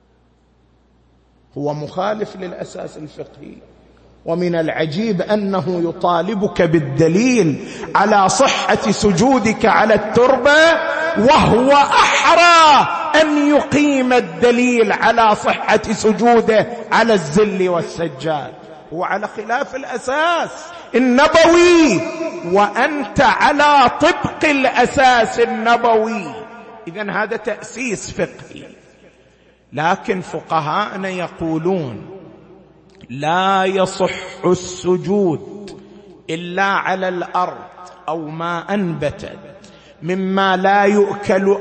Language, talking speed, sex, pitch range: Arabic, 80 wpm, male, 185-265 Hz